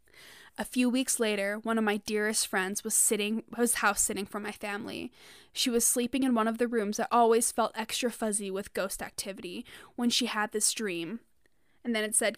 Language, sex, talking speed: English, female, 200 wpm